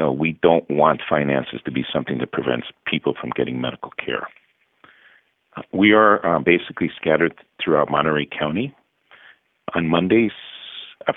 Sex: male